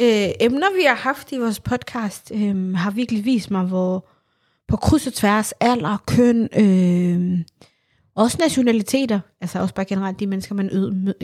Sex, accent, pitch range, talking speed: female, native, 185-225 Hz, 170 wpm